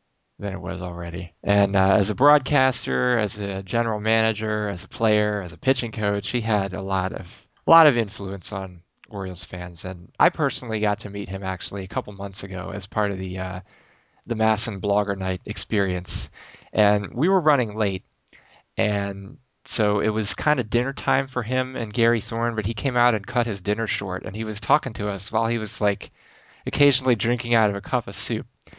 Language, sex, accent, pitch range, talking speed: English, male, American, 100-120 Hz, 210 wpm